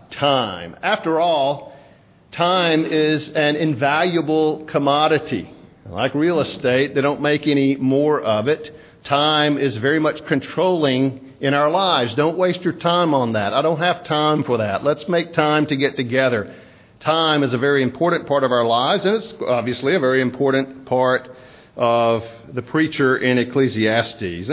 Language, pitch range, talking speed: English, 130-165 Hz, 160 wpm